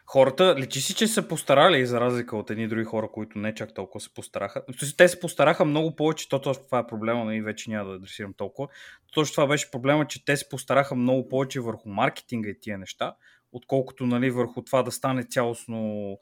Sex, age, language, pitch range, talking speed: male, 20-39, Bulgarian, 120-165 Hz, 215 wpm